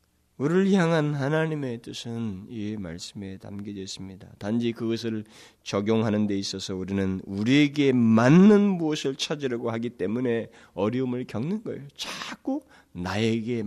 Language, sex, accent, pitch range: Korean, male, native, 95-130 Hz